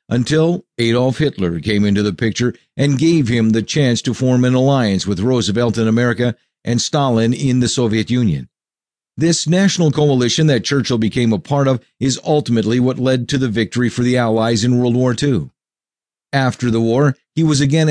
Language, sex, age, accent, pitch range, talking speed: English, male, 50-69, American, 115-140 Hz, 185 wpm